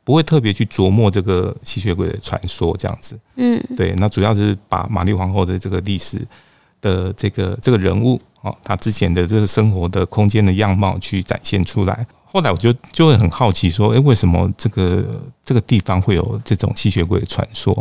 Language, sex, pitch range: Chinese, male, 95-115 Hz